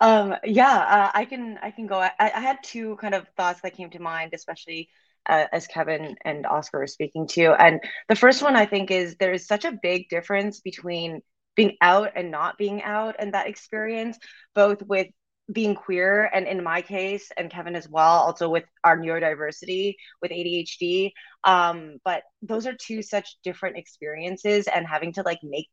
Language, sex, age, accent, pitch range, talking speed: English, female, 20-39, American, 155-200 Hz, 190 wpm